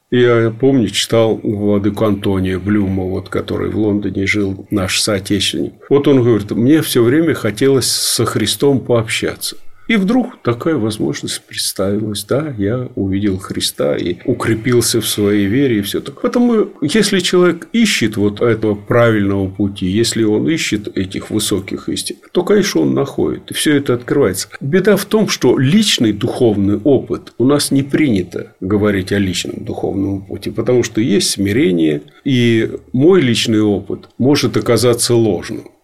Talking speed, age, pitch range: 145 wpm, 50-69, 105-130 Hz